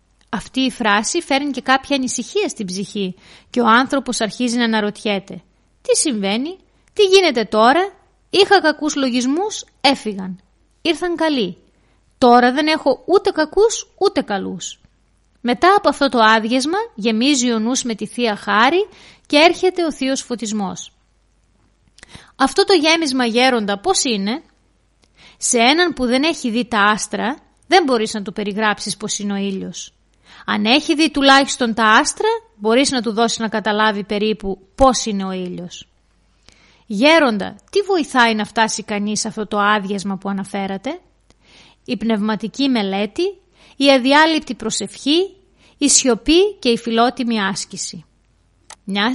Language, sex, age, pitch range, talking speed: Greek, female, 20-39, 210-290 Hz, 140 wpm